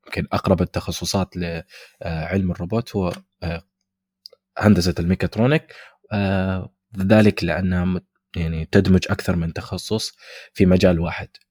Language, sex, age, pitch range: Arabic, male, 20-39, 90-105 Hz